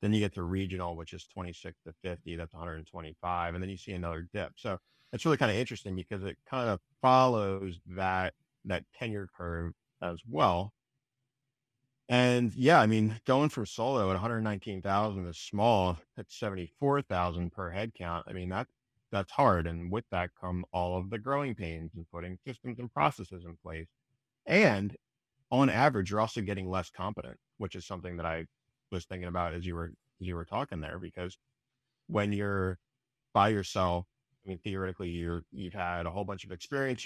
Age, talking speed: 30-49, 180 wpm